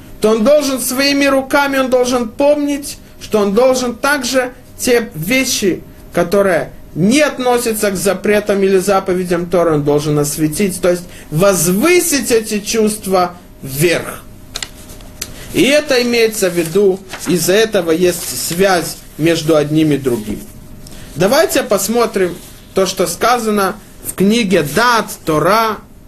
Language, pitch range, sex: Russian, 160-225 Hz, male